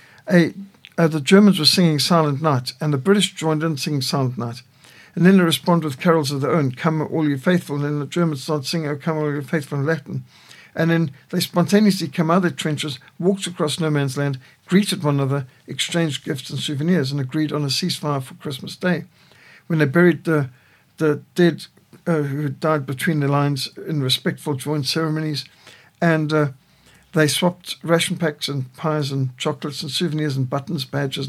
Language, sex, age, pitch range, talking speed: English, male, 60-79, 145-175 Hz, 195 wpm